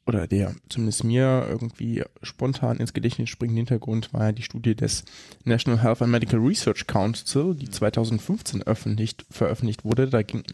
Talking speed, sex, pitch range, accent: 160 wpm, male, 110-125 Hz, German